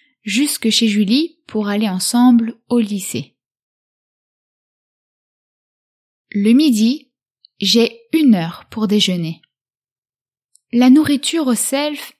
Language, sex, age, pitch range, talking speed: English, female, 20-39, 165-245 Hz, 95 wpm